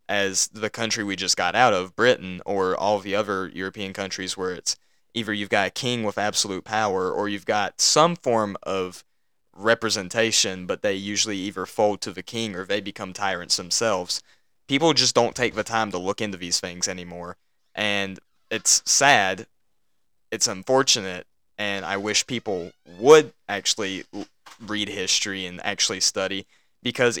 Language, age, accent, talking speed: English, 20-39, American, 165 wpm